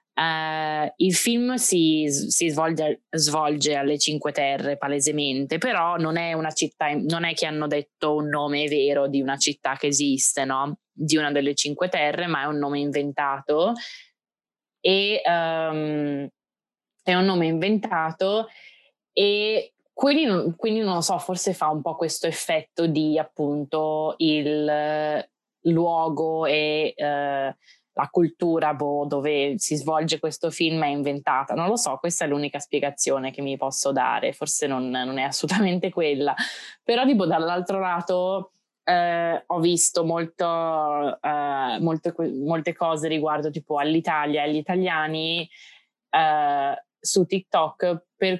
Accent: native